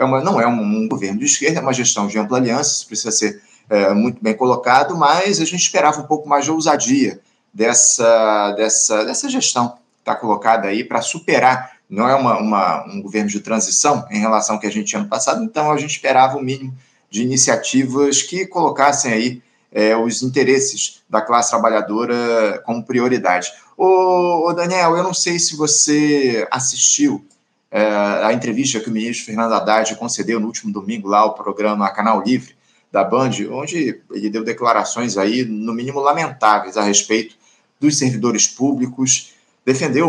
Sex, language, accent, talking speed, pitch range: male, Portuguese, Brazilian, 170 wpm, 110-150 Hz